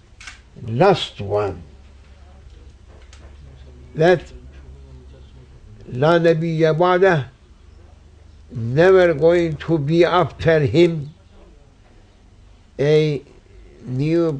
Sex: male